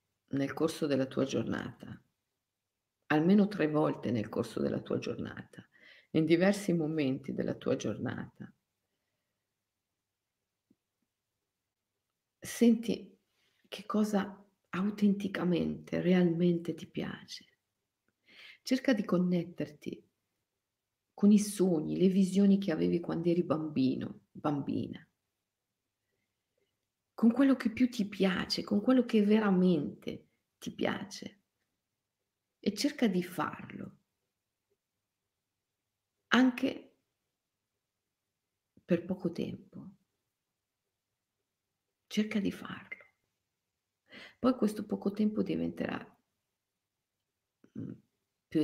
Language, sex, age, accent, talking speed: Italian, female, 50-69, native, 85 wpm